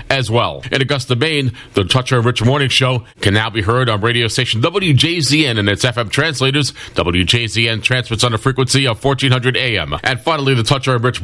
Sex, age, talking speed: male, 40-59, 185 wpm